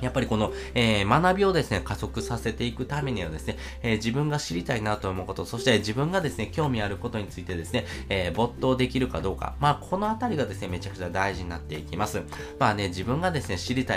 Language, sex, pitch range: Japanese, male, 95-130 Hz